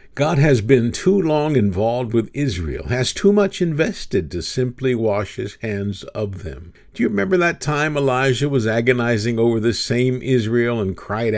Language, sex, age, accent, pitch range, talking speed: English, male, 50-69, American, 100-140 Hz, 175 wpm